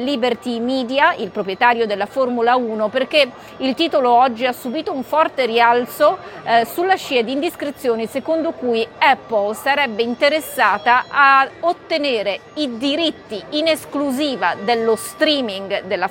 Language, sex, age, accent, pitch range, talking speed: Italian, female, 30-49, native, 225-270 Hz, 130 wpm